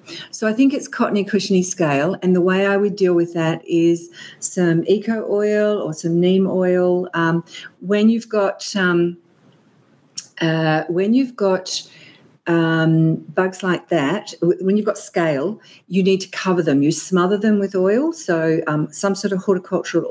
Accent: Australian